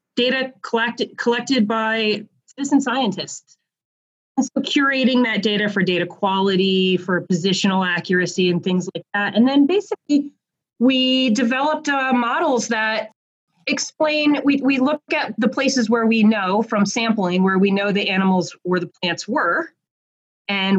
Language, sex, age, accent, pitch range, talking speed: English, female, 30-49, American, 175-230 Hz, 145 wpm